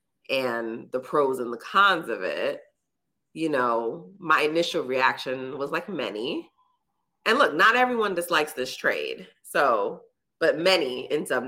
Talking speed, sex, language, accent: 145 wpm, female, English, American